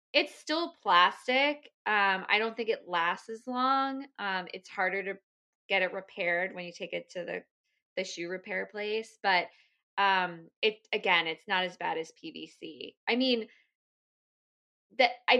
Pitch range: 180-245 Hz